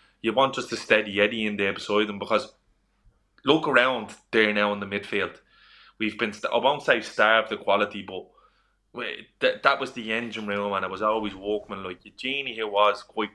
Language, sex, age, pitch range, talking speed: English, male, 20-39, 100-110 Hz, 195 wpm